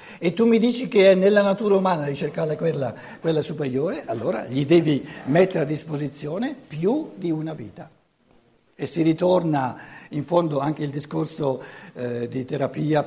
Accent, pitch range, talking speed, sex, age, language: native, 140-185 Hz, 160 wpm, male, 60-79, Italian